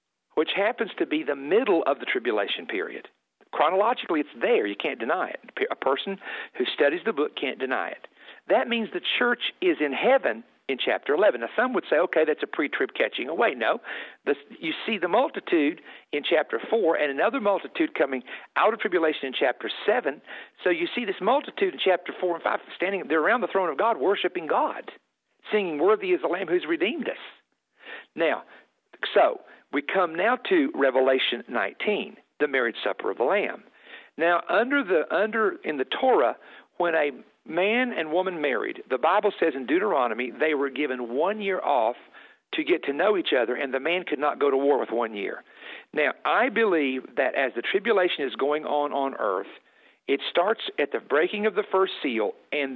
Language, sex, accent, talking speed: English, male, American, 190 wpm